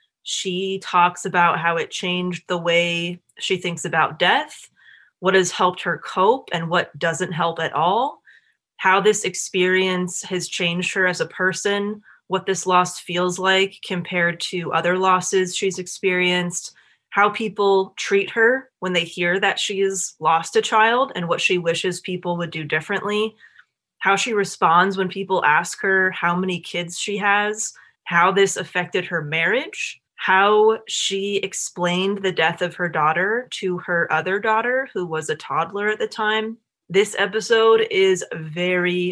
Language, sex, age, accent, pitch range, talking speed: English, female, 20-39, American, 175-200 Hz, 160 wpm